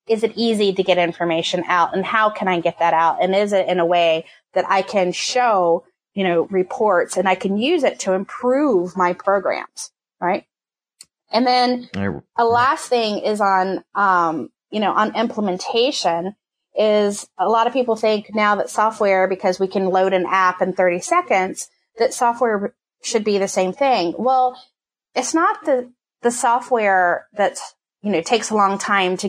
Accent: American